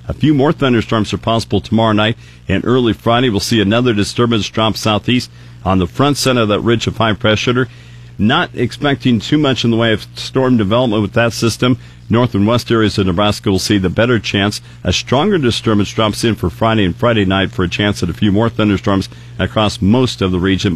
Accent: American